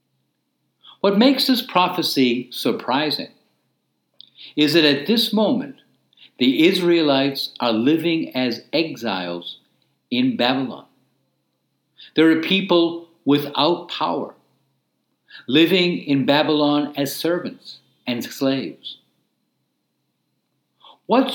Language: English